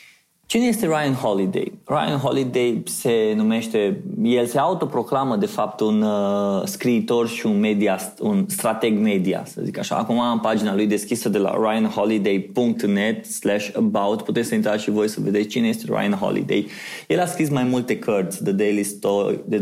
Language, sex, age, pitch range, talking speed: Romanian, male, 20-39, 105-135 Hz, 165 wpm